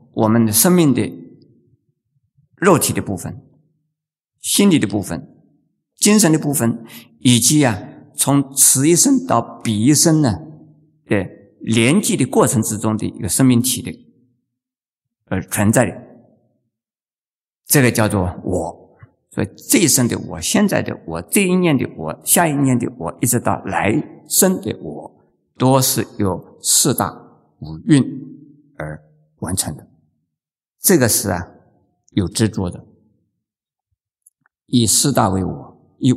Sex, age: male, 50-69